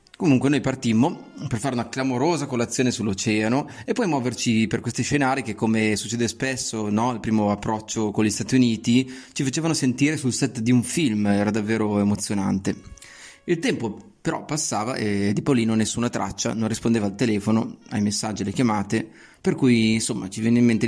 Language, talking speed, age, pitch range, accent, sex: Italian, 180 wpm, 30-49, 105-130 Hz, native, male